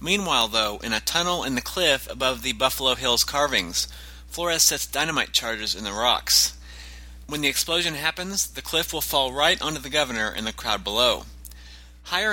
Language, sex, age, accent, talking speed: English, male, 30-49, American, 180 wpm